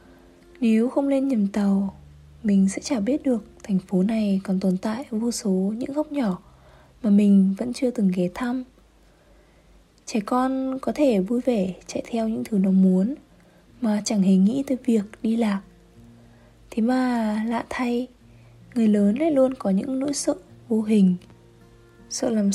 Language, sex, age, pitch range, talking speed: Vietnamese, female, 20-39, 190-250 Hz, 170 wpm